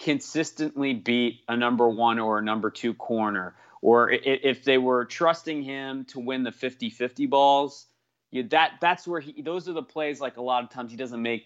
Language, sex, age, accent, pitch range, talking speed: English, male, 30-49, American, 110-135 Hz, 200 wpm